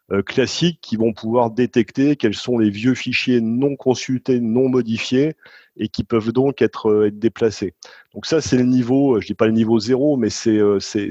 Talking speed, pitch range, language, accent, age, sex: 190 wpm, 110-135 Hz, French, French, 30-49, male